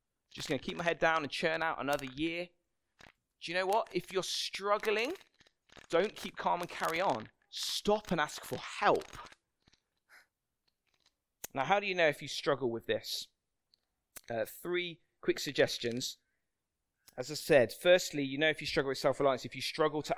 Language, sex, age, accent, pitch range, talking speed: English, male, 20-39, British, 135-180 Hz, 175 wpm